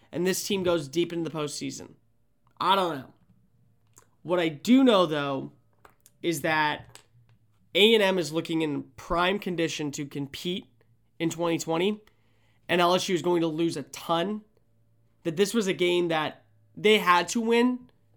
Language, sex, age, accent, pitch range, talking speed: English, male, 20-39, American, 150-200 Hz, 150 wpm